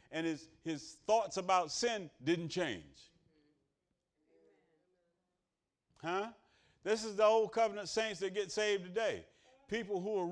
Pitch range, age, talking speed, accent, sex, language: 165-215 Hz, 40-59, 130 wpm, American, male, English